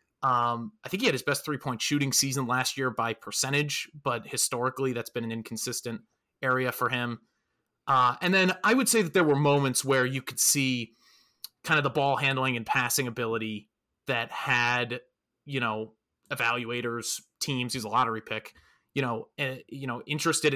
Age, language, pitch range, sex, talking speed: 20-39, English, 115-145 Hz, male, 180 wpm